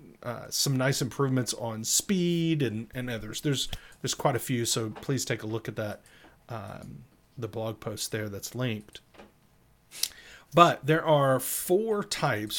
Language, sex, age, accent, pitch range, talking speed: English, male, 40-59, American, 110-145 Hz, 155 wpm